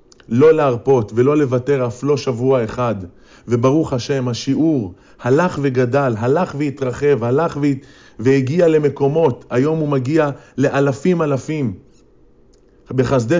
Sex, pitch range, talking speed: male, 125-150 Hz, 105 wpm